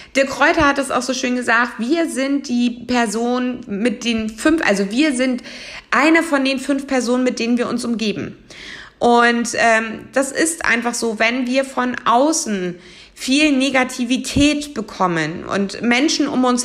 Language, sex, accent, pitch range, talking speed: German, female, German, 225-285 Hz, 160 wpm